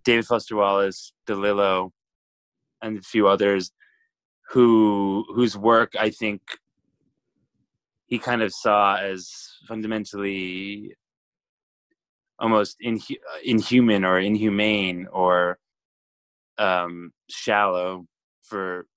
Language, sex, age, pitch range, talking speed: English, male, 20-39, 100-115 Hz, 90 wpm